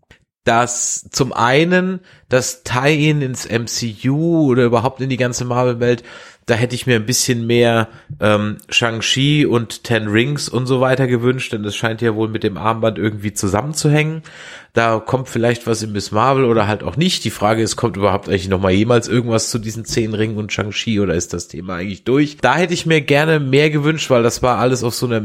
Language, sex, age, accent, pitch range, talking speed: German, male, 30-49, German, 115-135 Hz, 205 wpm